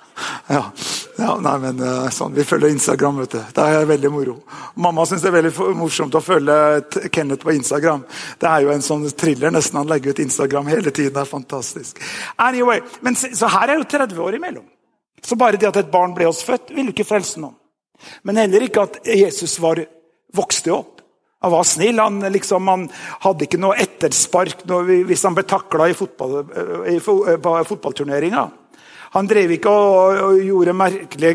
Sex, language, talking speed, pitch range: male, English, 180 wpm, 155-200 Hz